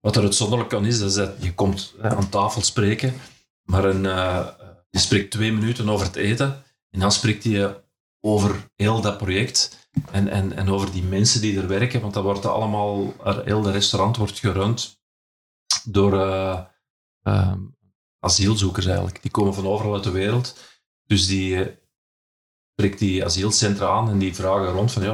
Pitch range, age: 95-110 Hz, 40-59